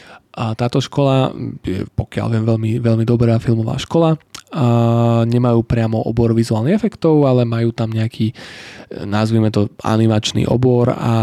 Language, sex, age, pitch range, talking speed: Slovak, male, 20-39, 115-120 Hz, 140 wpm